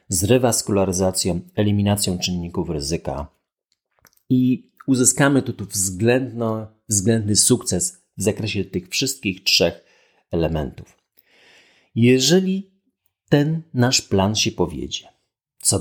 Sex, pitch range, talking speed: male, 95-135 Hz, 85 wpm